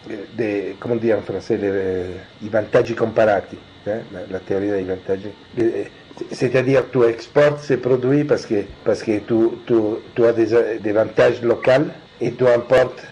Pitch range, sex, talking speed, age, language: 110-145 Hz, male, 145 wpm, 50-69, French